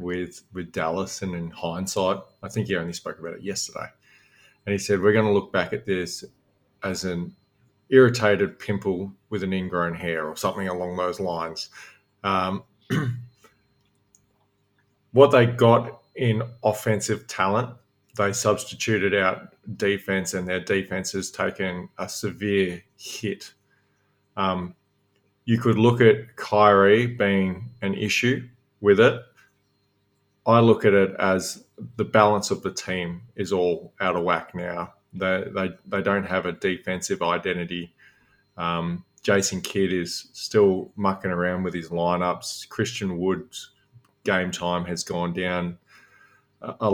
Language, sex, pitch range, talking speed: English, male, 90-105 Hz, 140 wpm